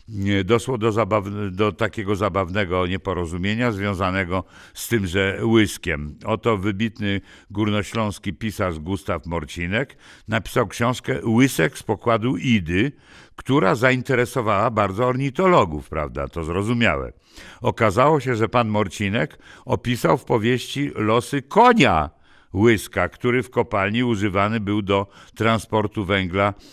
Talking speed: 110 wpm